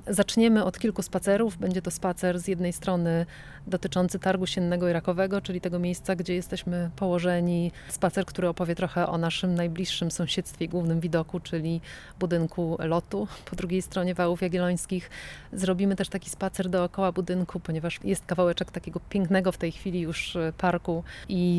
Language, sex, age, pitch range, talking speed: Polish, female, 30-49, 175-190 Hz, 155 wpm